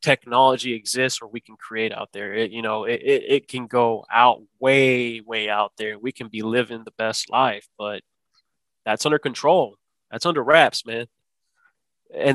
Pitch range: 120-150 Hz